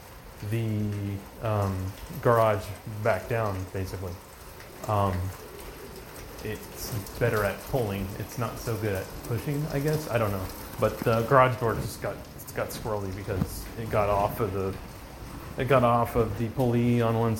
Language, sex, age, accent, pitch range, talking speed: English, male, 30-49, American, 100-125 Hz, 155 wpm